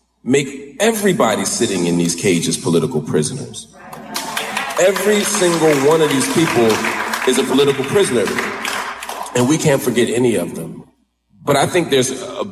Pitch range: 115-165 Hz